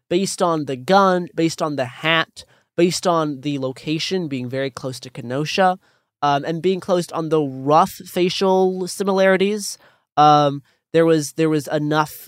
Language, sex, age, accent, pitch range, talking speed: English, male, 20-39, American, 135-165 Hz, 155 wpm